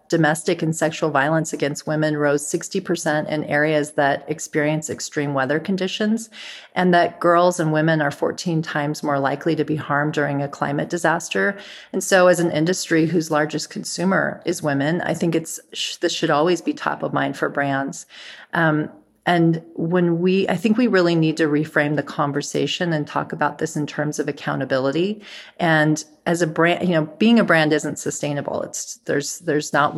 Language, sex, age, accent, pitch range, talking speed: English, female, 40-59, American, 150-170 Hz, 180 wpm